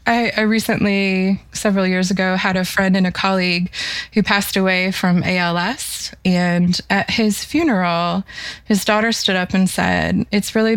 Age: 20-39